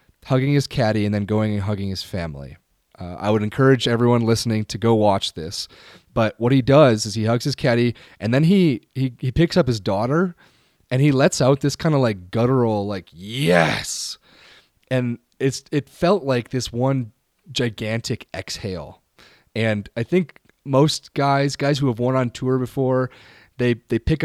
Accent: American